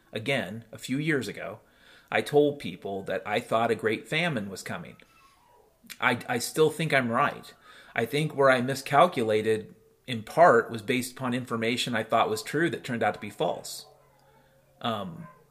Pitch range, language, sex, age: 115-140 Hz, English, male, 30-49